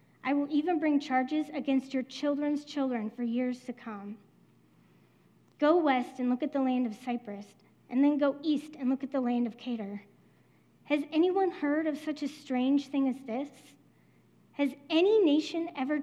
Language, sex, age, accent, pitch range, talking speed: English, female, 40-59, American, 230-280 Hz, 175 wpm